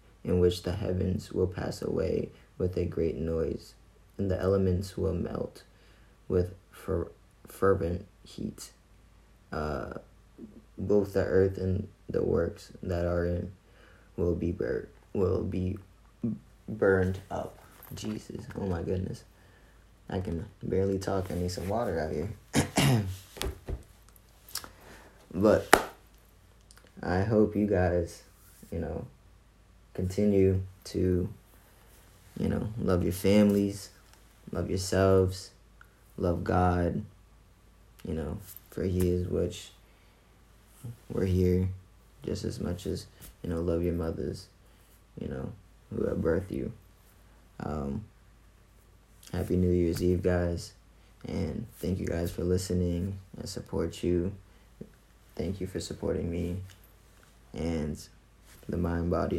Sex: male